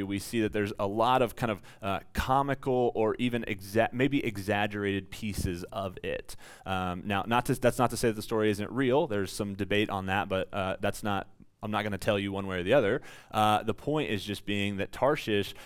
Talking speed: 235 wpm